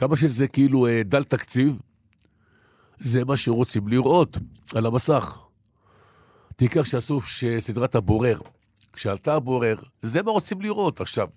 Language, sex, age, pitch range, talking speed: Hebrew, male, 60-79, 100-125 Hz, 115 wpm